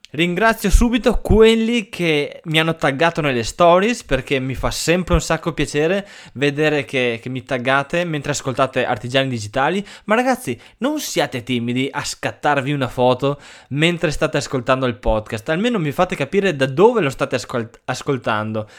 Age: 20-39